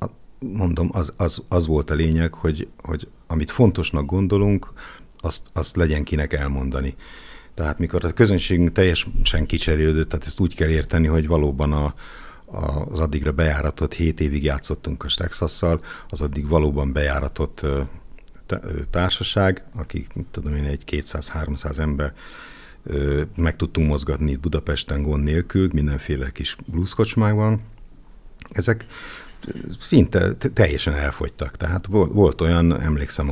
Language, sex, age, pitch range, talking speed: Hungarian, male, 60-79, 75-90 Hz, 125 wpm